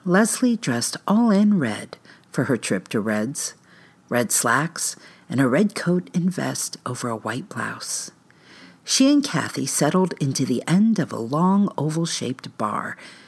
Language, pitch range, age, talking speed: English, 145-205 Hz, 50-69, 155 wpm